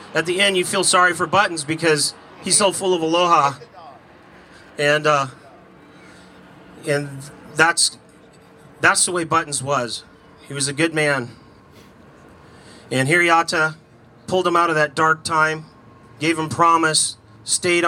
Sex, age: male, 40-59